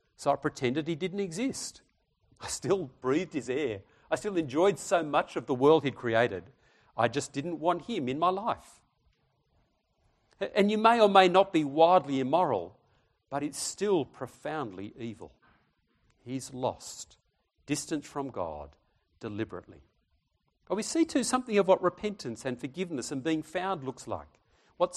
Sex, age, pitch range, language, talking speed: male, 50-69, 135-190 Hz, English, 155 wpm